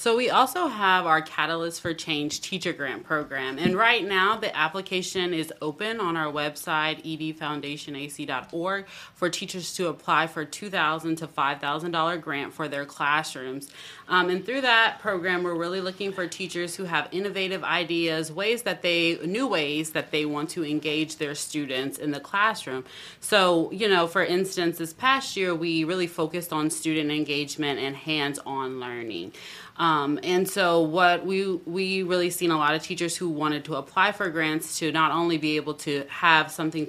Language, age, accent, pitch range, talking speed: English, 30-49, American, 150-180 Hz, 180 wpm